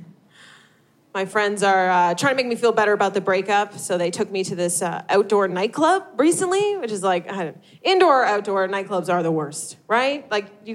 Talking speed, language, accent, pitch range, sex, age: 205 wpm, English, American, 185-270 Hz, female, 20-39